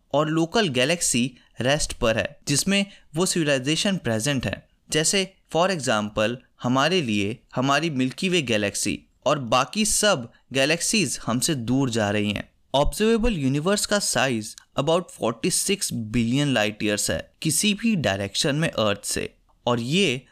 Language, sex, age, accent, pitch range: Hindi, male, 20-39, native, 125-190 Hz